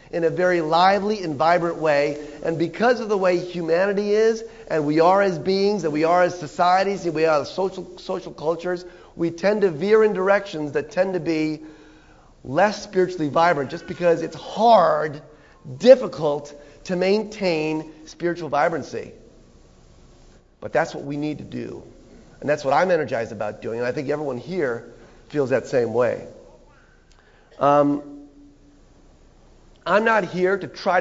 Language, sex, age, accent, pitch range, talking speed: English, male, 40-59, American, 155-195 Hz, 155 wpm